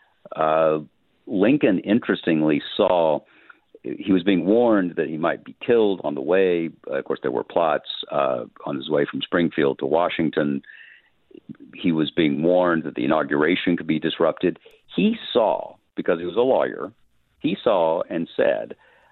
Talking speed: 155 wpm